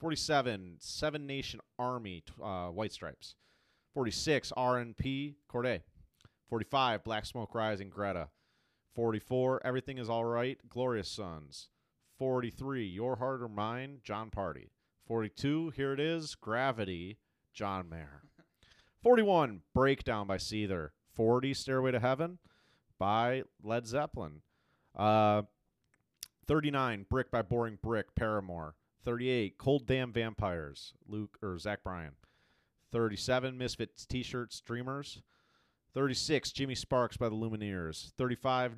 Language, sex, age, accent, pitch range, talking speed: English, male, 30-49, American, 100-130 Hz, 115 wpm